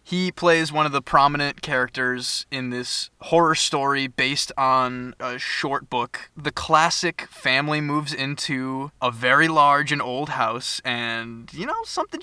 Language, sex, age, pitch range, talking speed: English, male, 20-39, 125-160 Hz, 150 wpm